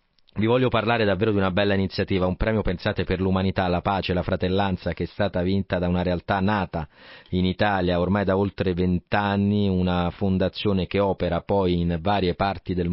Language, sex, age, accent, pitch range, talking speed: Italian, male, 40-59, native, 90-105 Hz, 185 wpm